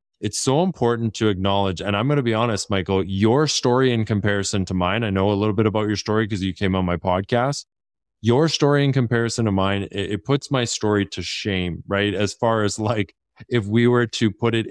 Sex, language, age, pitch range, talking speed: male, English, 20-39, 95-110 Hz, 230 wpm